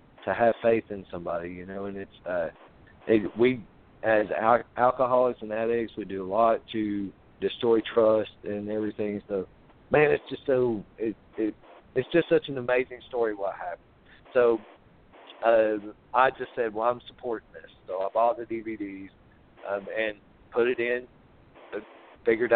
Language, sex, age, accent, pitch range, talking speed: English, male, 50-69, American, 105-125 Hz, 160 wpm